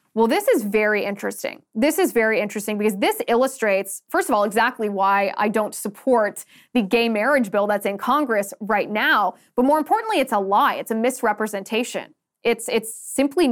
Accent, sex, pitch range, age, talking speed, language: American, female, 210-270 Hz, 20-39, 180 wpm, English